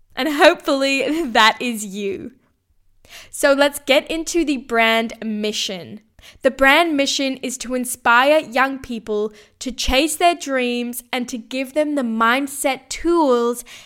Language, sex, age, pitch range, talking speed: English, female, 10-29, 220-270 Hz, 135 wpm